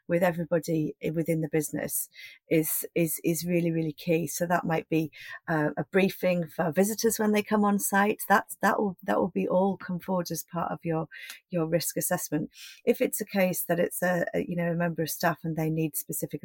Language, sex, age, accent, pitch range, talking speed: English, female, 40-59, British, 165-195 Hz, 215 wpm